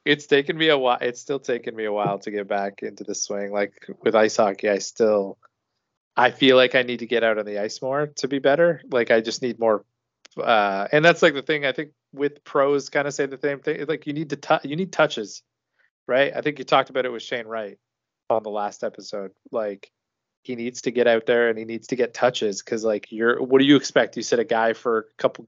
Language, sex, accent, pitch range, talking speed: English, male, American, 110-140 Hz, 255 wpm